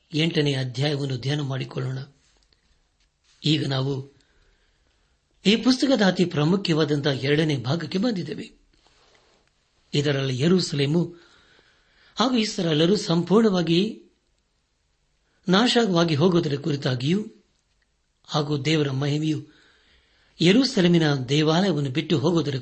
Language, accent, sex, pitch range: Kannada, native, male, 135-175 Hz